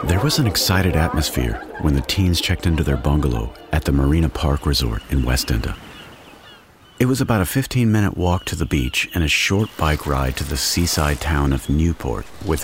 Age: 50-69